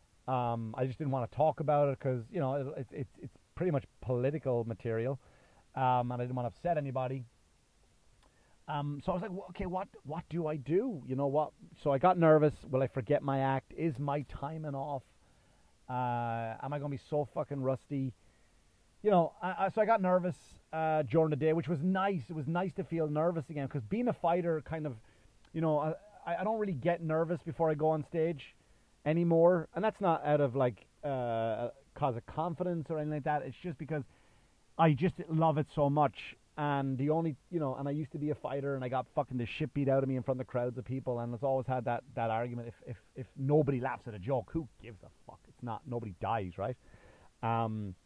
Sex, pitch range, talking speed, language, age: male, 120-160 Hz, 220 wpm, English, 30-49